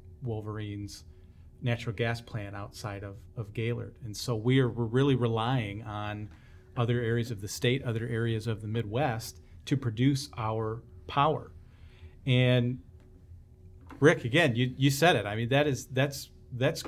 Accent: American